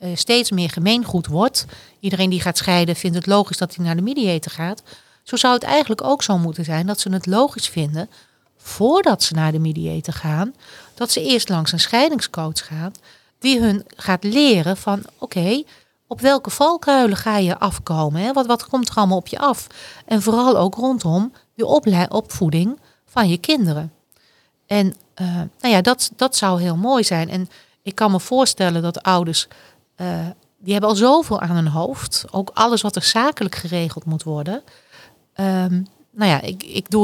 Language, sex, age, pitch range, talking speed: Dutch, female, 40-59, 170-225 Hz, 185 wpm